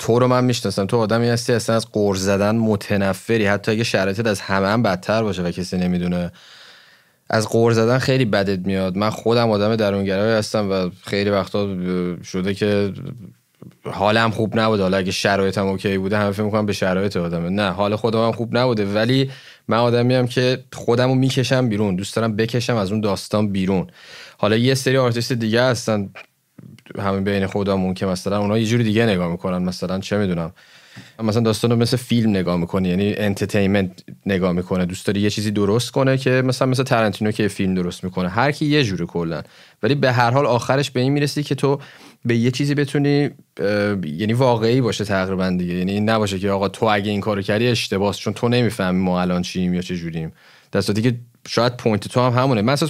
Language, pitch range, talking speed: Persian, 95-125 Hz, 185 wpm